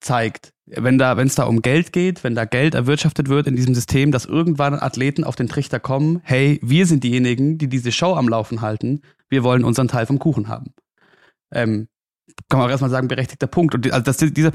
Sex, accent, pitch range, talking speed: male, German, 125-150 Hz, 215 wpm